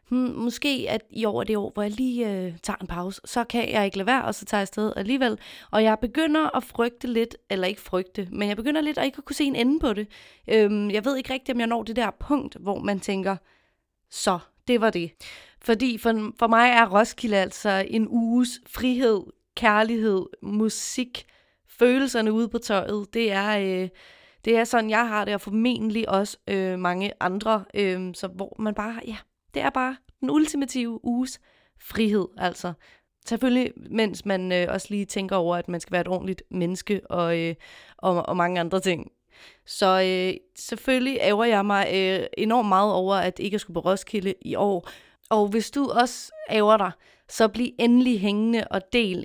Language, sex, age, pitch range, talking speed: Danish, female, 30-49, 195-235 Hz, 195 wpm